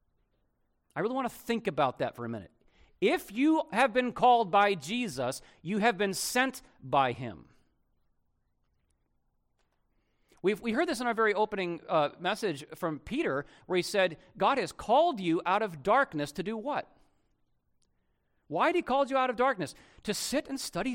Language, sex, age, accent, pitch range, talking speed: English, male, 40-59, American, 185-290 Hz, 170 wpm